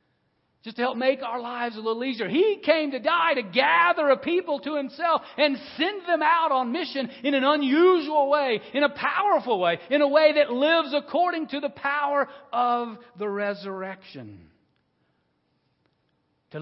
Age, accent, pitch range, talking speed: 50-69, American, 210-290 Hz, 165 wpm